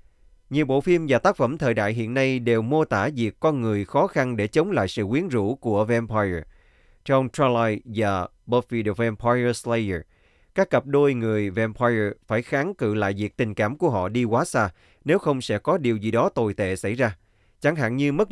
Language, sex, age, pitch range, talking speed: Vietnamese, male, 20-39, 105-140 Hz, 215 wpm